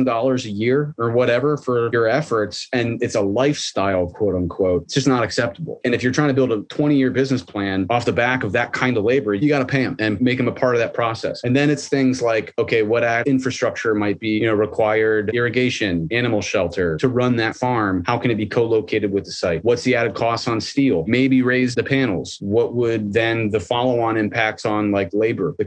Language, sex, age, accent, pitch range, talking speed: English, male, 30-49, American, 110-135 Hz, 230 wpm